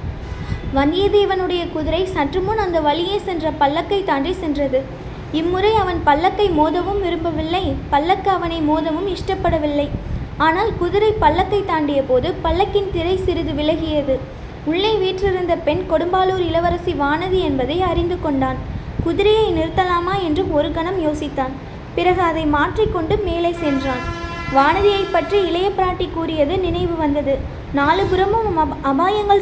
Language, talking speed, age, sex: Tamil, 110 wpm, 20-39, female